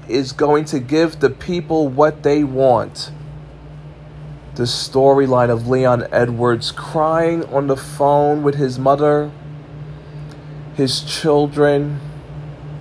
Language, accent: English, American